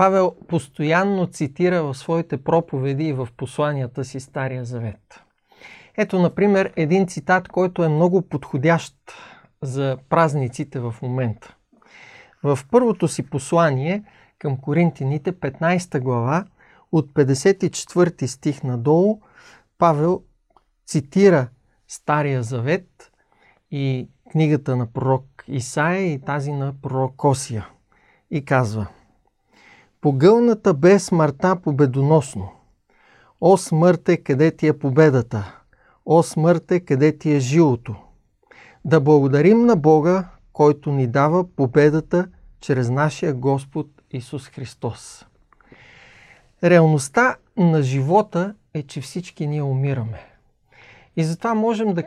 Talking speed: 105 wpm